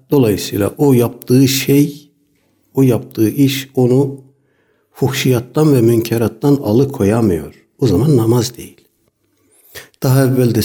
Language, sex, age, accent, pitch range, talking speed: Turkish, male, 60-79, native, 105-140 Hz, 105 wpm